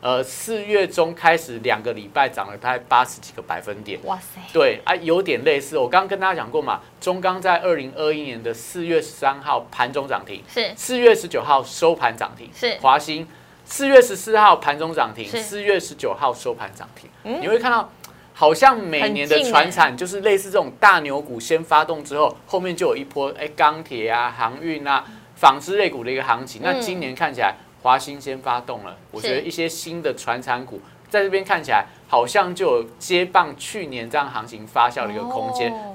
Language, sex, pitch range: Chinese, male, 140-205 Hz